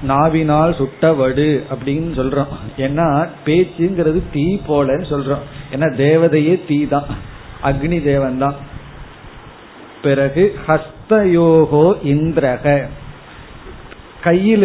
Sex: male